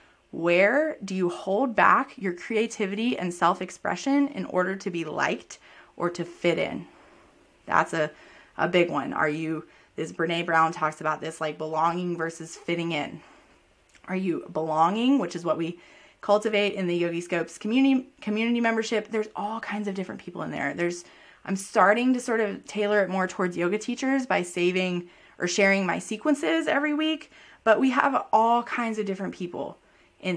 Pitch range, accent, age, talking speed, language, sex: 170-210 Hz, American, 20-39, 175 wpm, English, female